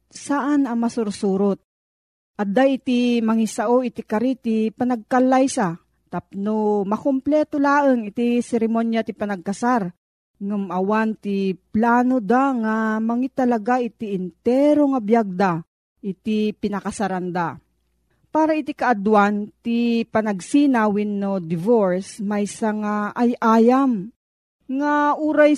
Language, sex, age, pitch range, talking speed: Filipino, female, 40-59, 200-255 Hz, 100 wpm